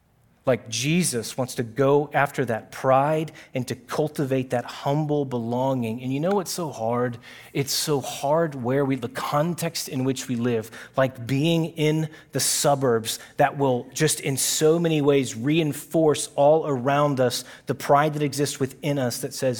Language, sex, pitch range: English, male, 120-145 Hz